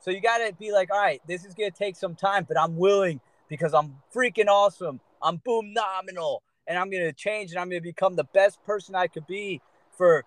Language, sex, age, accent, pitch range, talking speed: English, male, 30-49, American, 180-230 Hz, 245 wpm